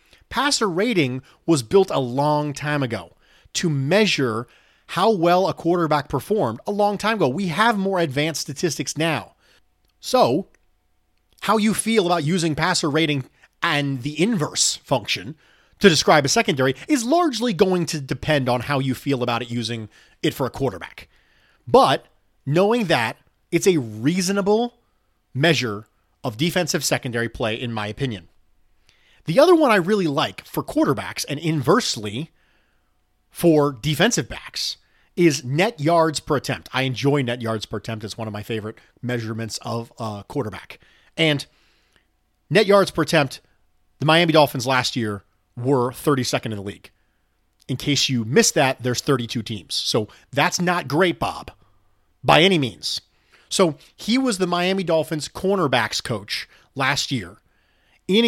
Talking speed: 150 wpm